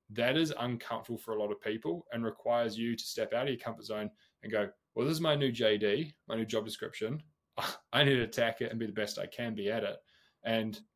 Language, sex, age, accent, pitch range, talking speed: English, male, 20-39, Australian, 105-125 Hz, 245 wpm